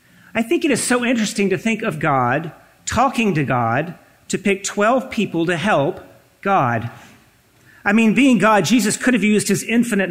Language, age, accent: English, 40-59, American